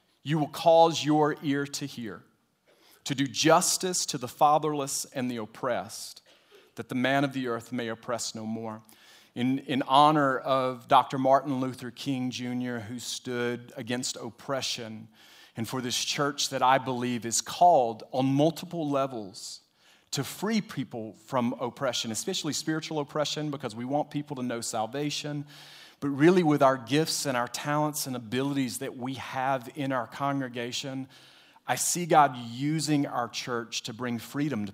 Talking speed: 160 wpm